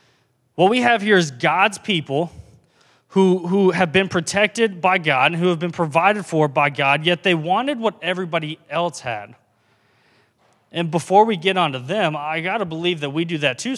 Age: 20-39